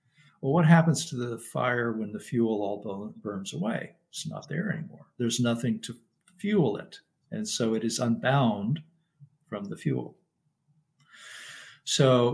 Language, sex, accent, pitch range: English, male, American, 115-155 Hz